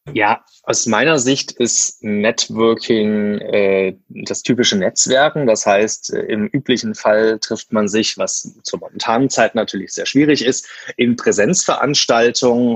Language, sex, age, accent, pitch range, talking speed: German, male, 20-39, German, 105-120 Hz, 130 wpm